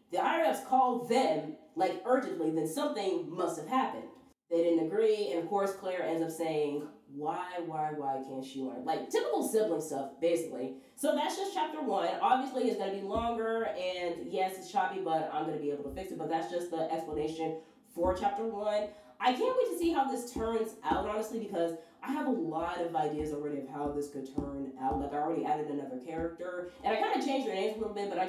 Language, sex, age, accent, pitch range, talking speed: English, female, 20-39, American, 155-235 Hz, 225 wpm